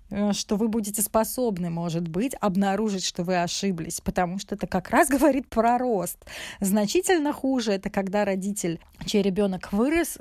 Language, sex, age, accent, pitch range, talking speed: Russian, female, 20-39, native, 190-235 Hz, 155 wpm